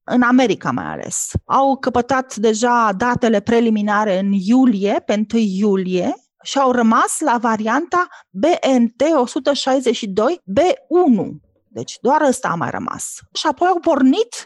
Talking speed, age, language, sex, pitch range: 120 wpm, 30-49, Romanian, female, 205-260 Hz